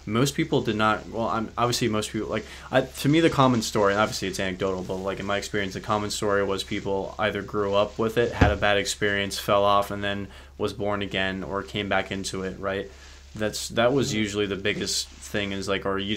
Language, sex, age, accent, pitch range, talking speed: English, male, 20-39, American, 95-105 Hz, 230 wpm